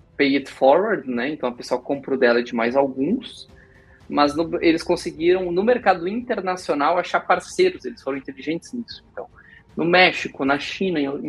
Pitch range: 135-195 Hz